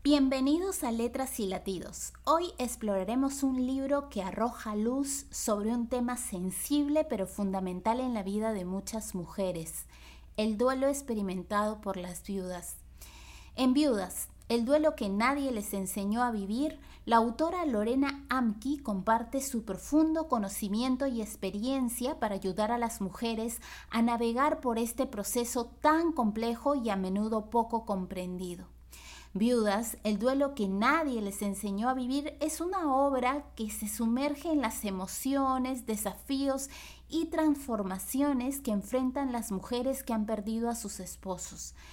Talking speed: 140 wpm